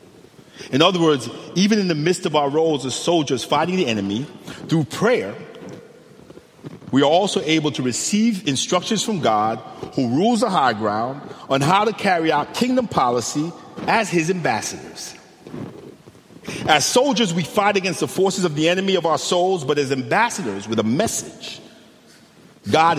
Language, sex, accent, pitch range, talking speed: English, male, American, 105-165 Hz, 160 wpm